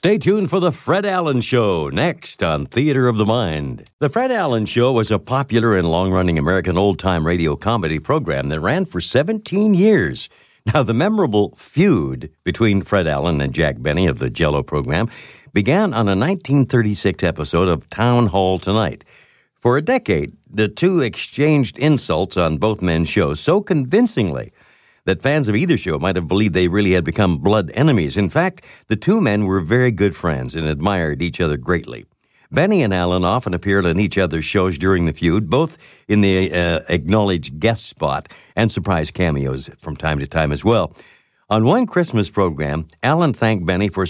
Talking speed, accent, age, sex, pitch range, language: 180 wpm, American, 60-79, male, 90-125 Hz, English